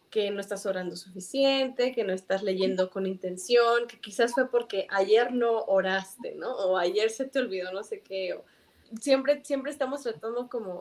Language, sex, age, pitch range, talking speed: Spanish, female, 20-39, 200-250 Hz, 185 wpm